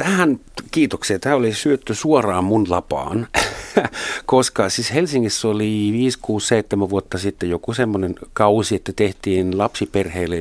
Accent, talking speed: native, 120 wpm